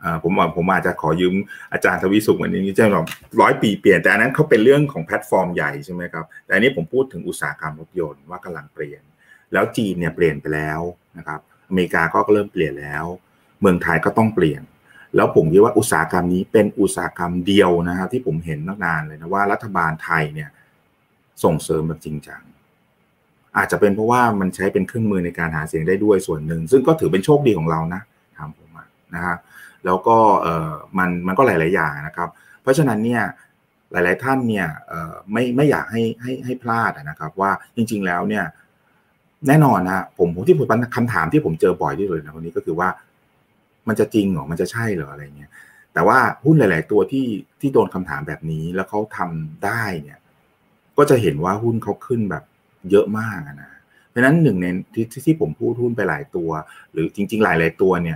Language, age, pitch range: Thai, 30-49, 80-115 Hz